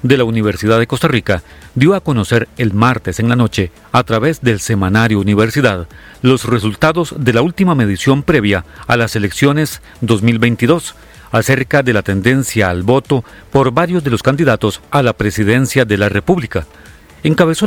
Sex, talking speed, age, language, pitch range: male, 165 wpm, 40-59, Spanish, 105-140 Hz